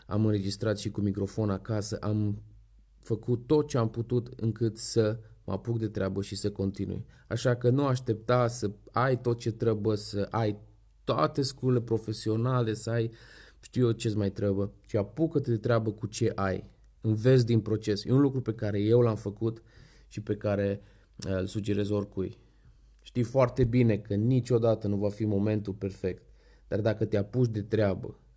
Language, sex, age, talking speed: Romanian, male, 20-39, 175 wpm